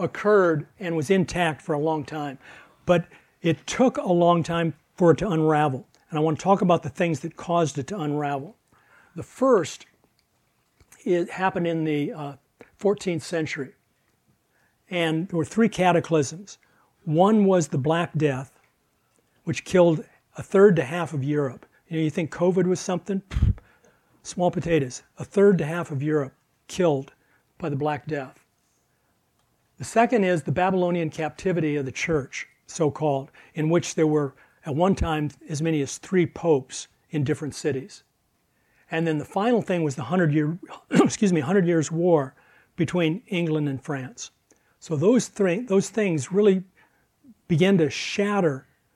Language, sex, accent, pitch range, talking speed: English, male, American, 150-180 Hz, 155 wpm